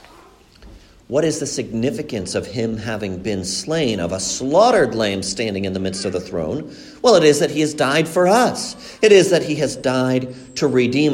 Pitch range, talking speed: 95-135 Hz, 200 wpm